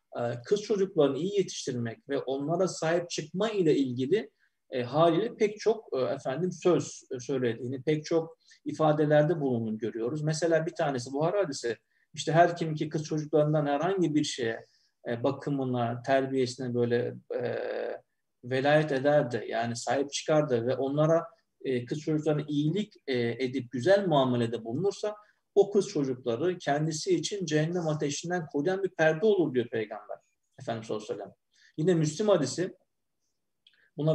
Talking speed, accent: 135 wpm, native